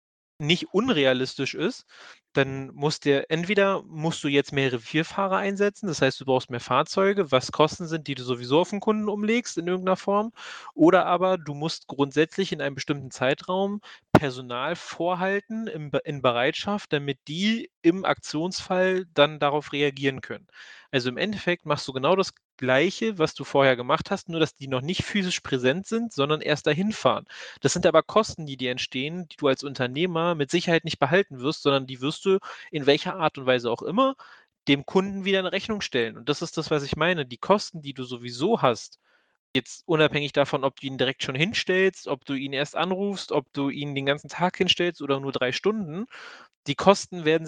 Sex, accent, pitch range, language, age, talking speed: male, German, 140-185 Hz, German, 30-49, 190 wpm